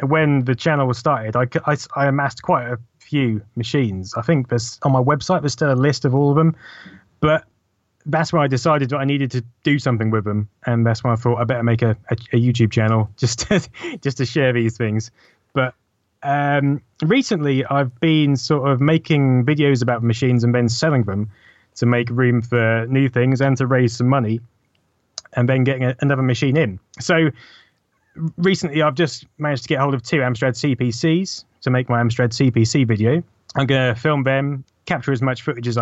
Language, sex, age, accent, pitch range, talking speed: English, male, 20-39, British, 120-150 Hz, 200 wpm